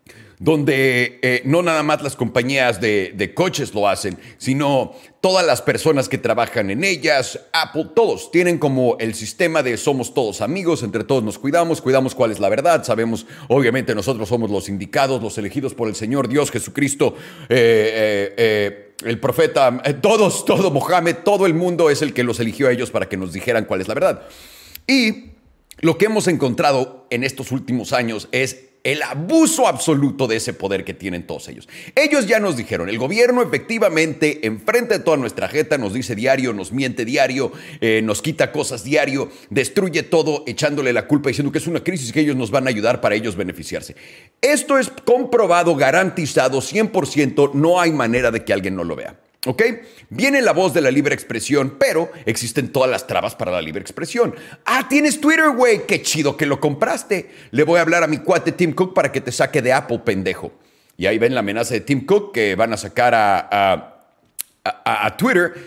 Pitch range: 125-175 Hz